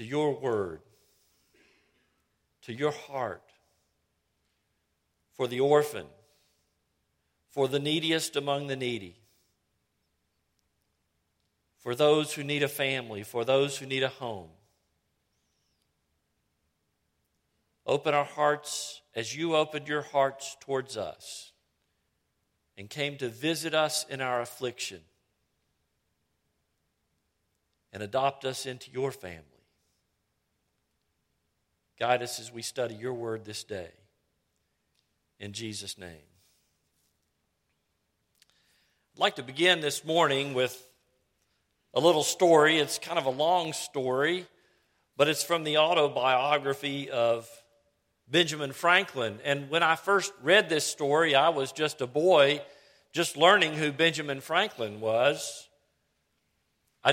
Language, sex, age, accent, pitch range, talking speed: English, male, 50-69, American, 90-150 Hz, 110 wpm